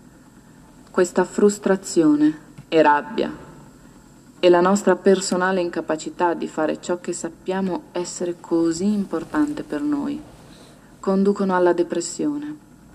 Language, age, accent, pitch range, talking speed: Italian, 30-49, native, 165-195 Hz, 100 wpm